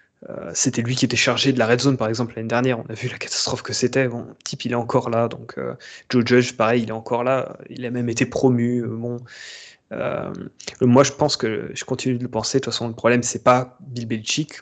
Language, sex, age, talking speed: French, male, 20-39, 255 wpm